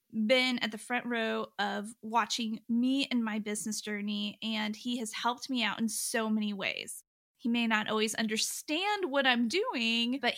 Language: English